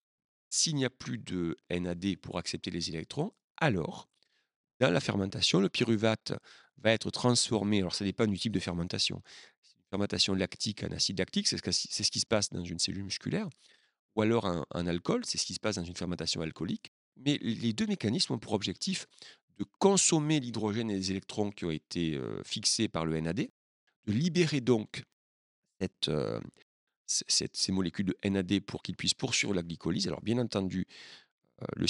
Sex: male